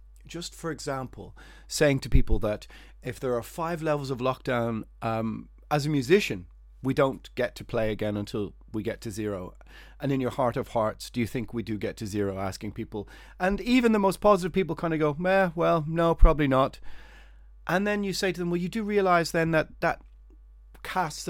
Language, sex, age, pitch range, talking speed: English, male, 30-49, 120-165 Hz, 205 wpm